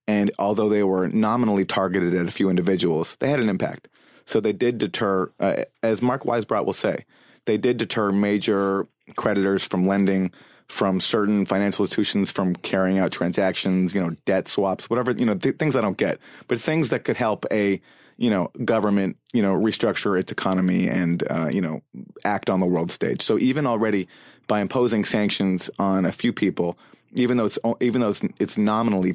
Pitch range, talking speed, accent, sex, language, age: 95-110 Hz, 185 wpm, American, male, English, 30-49